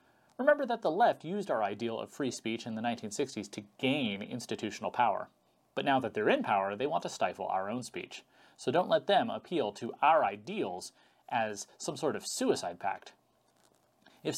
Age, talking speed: 30-49, 190 wpm